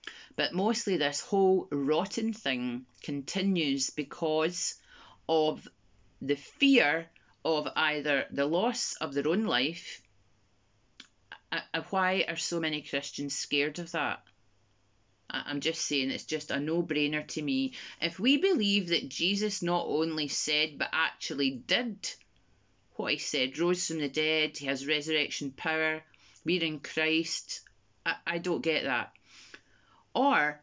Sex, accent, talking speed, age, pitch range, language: female, British, 135 wpm, 30-49, 145-185 Hz, English